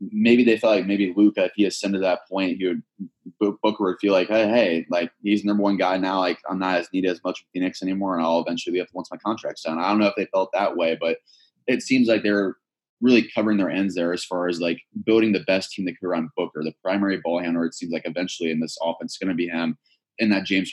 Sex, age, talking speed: male, 20-39, 270 wpm